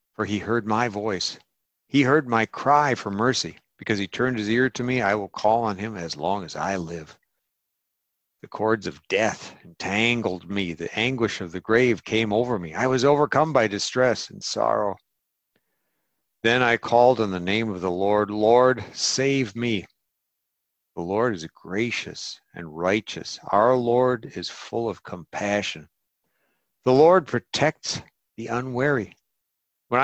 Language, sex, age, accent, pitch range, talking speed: English, male, 60-79, American, 95-120 Hz, 160 wpm